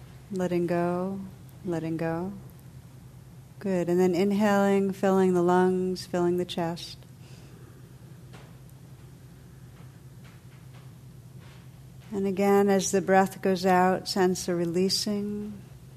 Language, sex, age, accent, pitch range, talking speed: English, female, 50-69, American, 135-185 Hz, 90 wpm